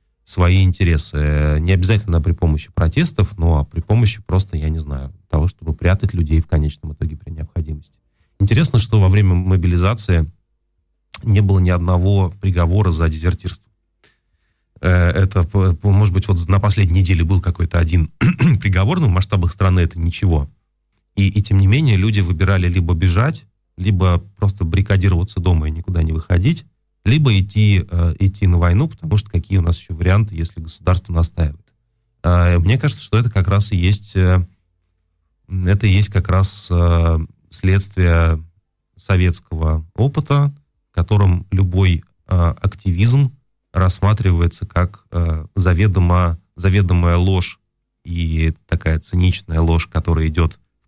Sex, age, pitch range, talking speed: male, 30-49, 85-100 Hz, 135 wpm